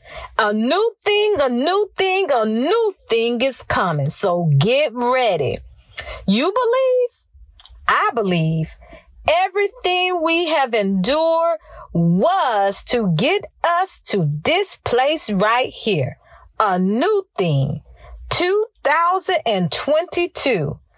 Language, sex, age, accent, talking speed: English, female, 40-59, American, 100 wpm